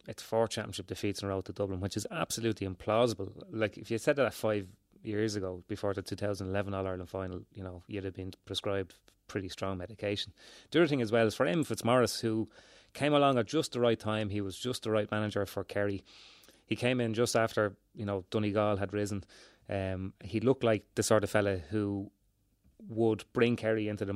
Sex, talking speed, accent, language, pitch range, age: male, 210 wpm, Irish, English, 100-115 Hz, 30-49